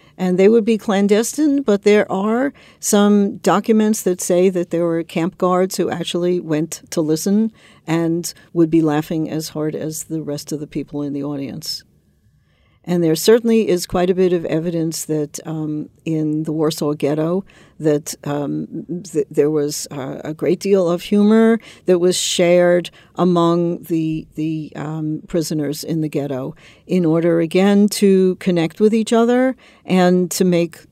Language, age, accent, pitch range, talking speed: English, 60-79, American, 160-190 Hz, 165 wpm